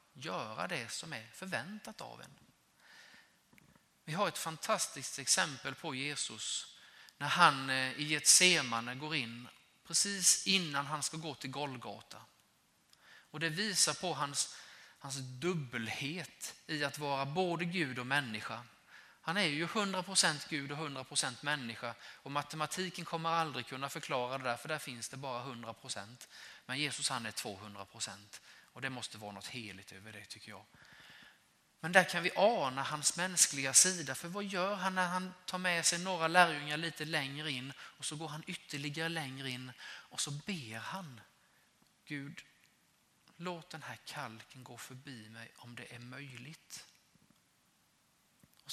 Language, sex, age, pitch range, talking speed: Swedish, male, 20-39, 125-165 Hz, 150 wpm